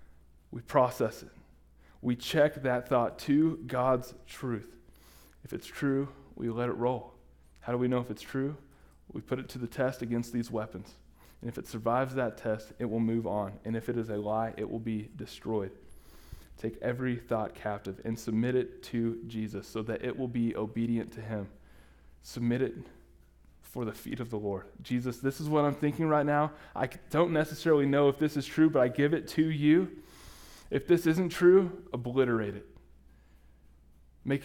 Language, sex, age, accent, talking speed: English, male, 20-39, American, 185 wpm